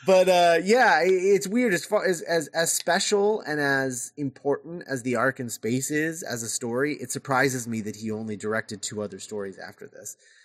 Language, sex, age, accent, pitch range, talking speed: English, male, 30-49, American, 120-155 Hz, 200 wpm